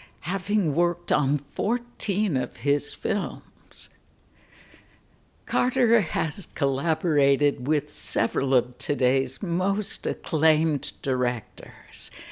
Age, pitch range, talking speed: 60-79, 135-165 Hz, 85 wpm